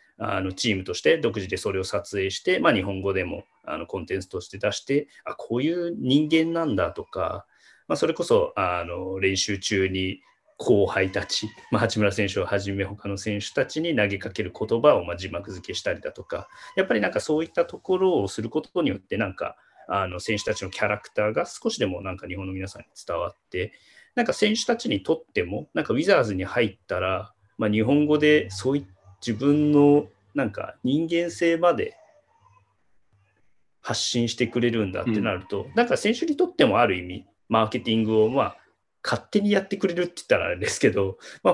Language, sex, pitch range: Japanese, male, 100-150 Hz